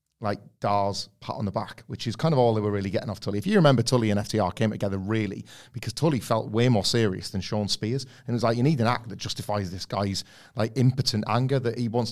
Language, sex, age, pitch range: English, male, 30-49, 105-125 Hz